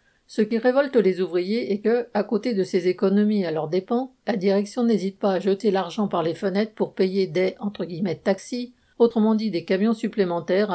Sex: female